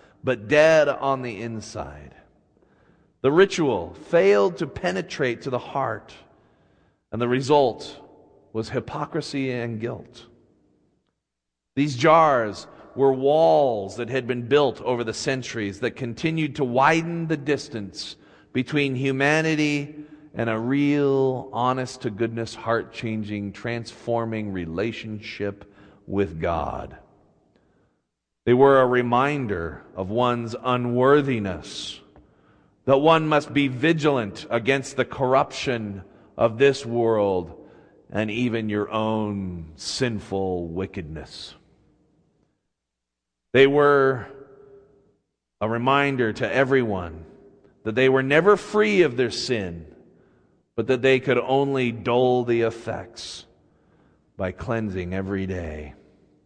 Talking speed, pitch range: 105 wpm, 100-135 Hz